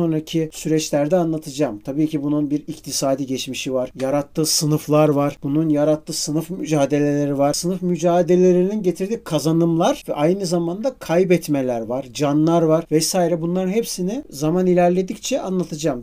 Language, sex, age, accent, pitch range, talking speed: Turkish, male, 50-69, native, 145-195 Hz, 130 wpm